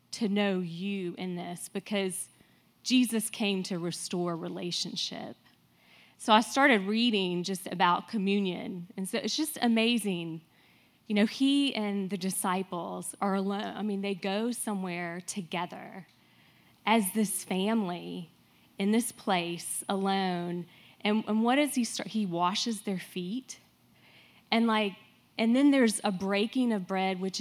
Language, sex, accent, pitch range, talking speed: English, female, American, 180-220 Hz, 140 wpm